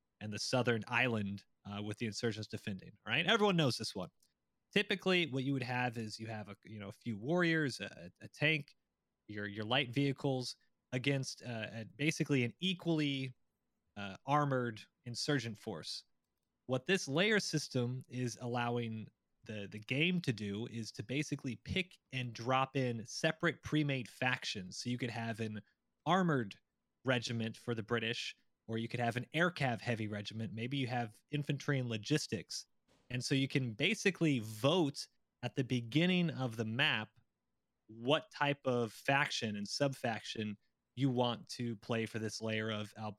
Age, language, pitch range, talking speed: 20-39, English, 110-145 Hz, 165 wpm